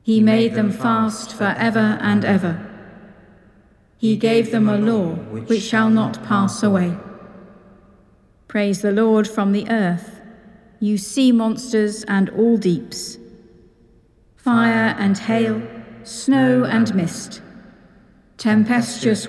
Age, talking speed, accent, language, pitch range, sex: 50-69, 115 wpm, British, English, 195-225 Hz, female